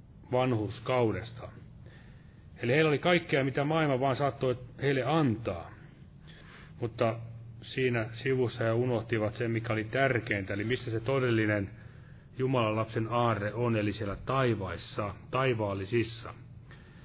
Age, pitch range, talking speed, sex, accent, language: 30-49, 110-130 Hz, 115 wpm, male, native, Finnish